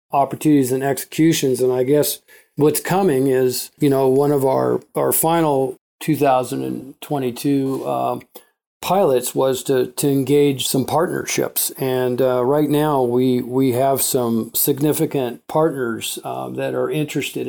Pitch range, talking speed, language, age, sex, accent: 130-145 Hz, 135 wpm, English, 50-69, male, American